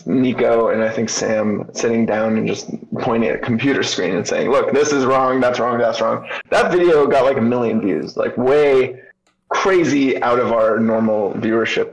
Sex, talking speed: male, 195 wpm